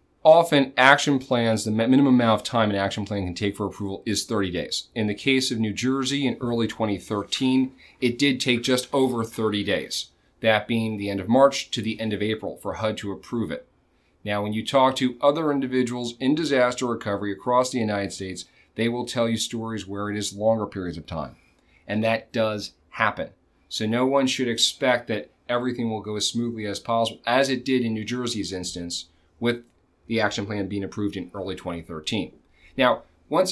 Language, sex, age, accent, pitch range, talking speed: English, male, 40-59, American, 100-130 Hz, 195 wpm